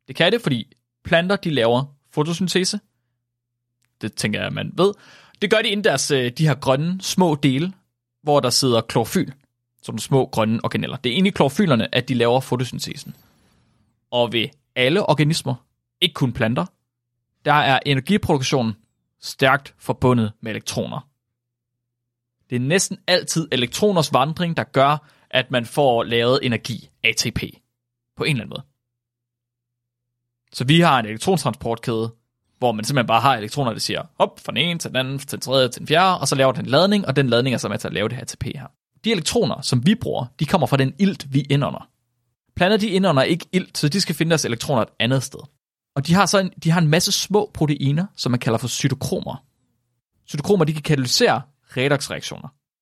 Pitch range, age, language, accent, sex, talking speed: 120-165 Hz, 30-49, Danish, native, male, 190 wpm